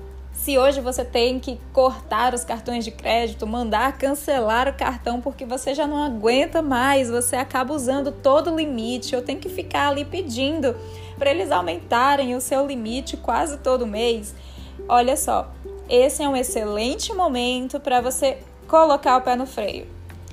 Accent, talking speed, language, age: Brazilian, 160 wpm, Portuguese, 10-29